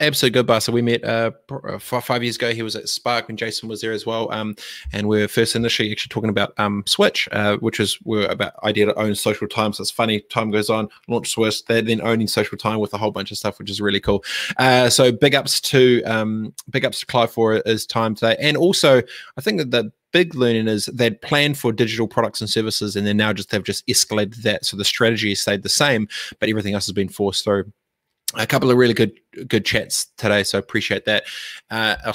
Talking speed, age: 240 wpm, 20-39